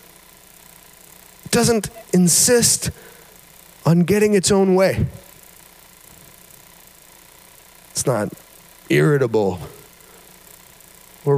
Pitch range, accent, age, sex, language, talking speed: 140-185 Hz, American, 40-59, male, English, 60 wpm